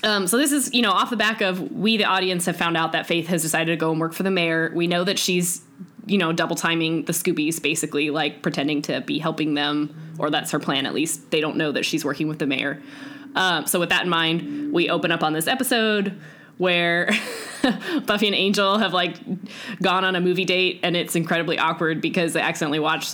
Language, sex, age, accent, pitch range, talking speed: English, female, 10-29, American, 160-200 Hz, 235 wpm